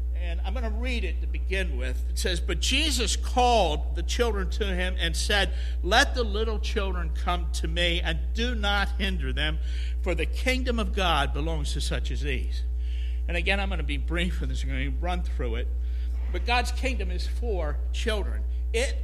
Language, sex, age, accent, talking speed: English, male, 60-79, American, 200 wpm